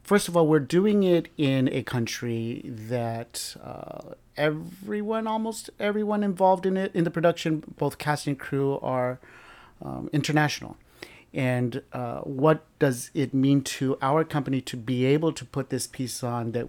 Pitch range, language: 125-155 Hz, English